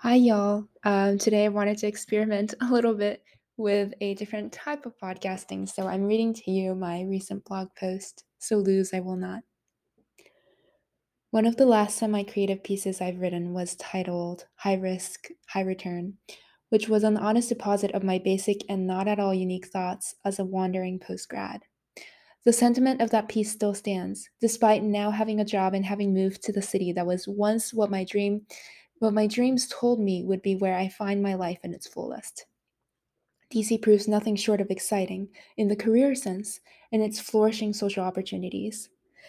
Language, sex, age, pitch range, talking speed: English, female, 20-39, 190-220 Hz, 175 wpm